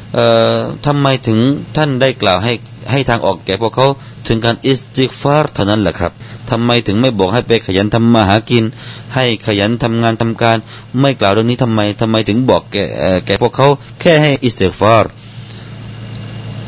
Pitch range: 105-125 Hz